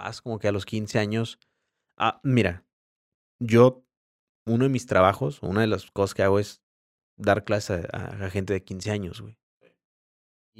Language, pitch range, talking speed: Spanish, 100-125 Hz, 165 wpm